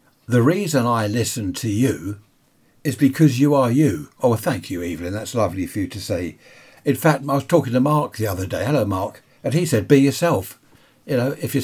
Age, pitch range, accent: 60-79, 105-135 Hz, British